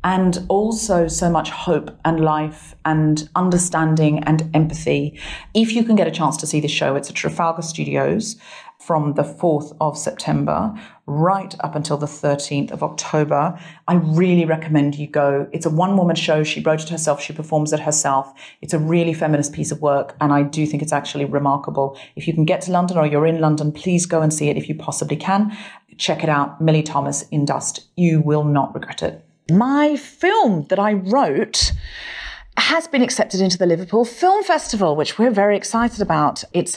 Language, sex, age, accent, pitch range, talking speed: English, female, 40-59, British, 155-200 Hz, 195 wpm